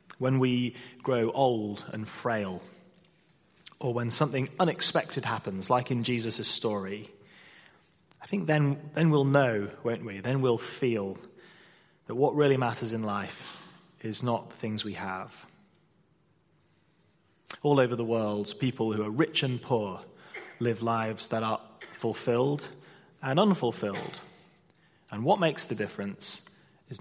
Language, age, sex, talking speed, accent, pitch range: English, 30-49, male, 135 wpm, British, 115-155 Hz